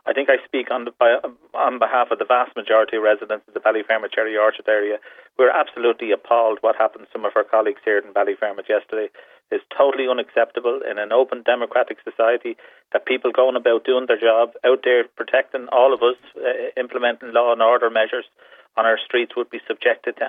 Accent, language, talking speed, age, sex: Irish, English, 205 wpm, 40-59, male